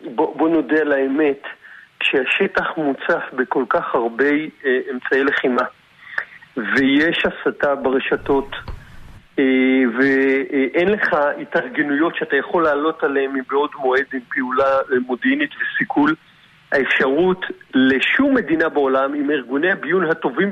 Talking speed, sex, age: 100 wpm, male, 40-59